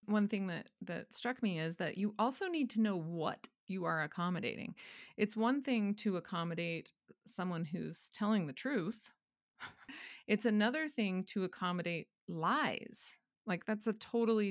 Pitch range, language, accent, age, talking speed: 180-225 Hz, English, American, 30-49, 155 wpm